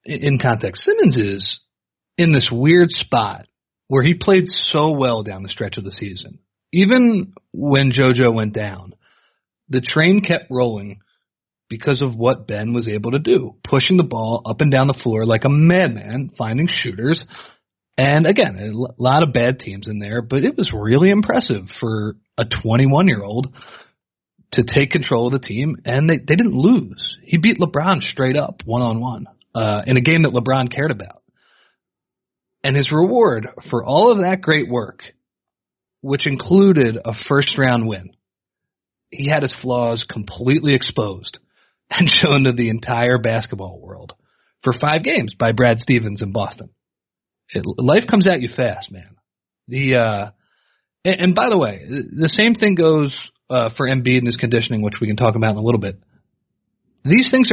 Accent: American